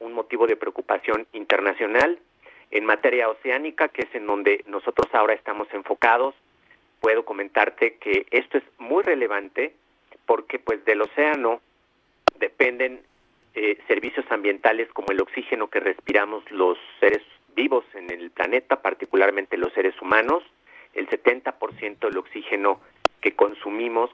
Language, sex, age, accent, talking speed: Spanish, male, 50-69, Mexican, 130 wpm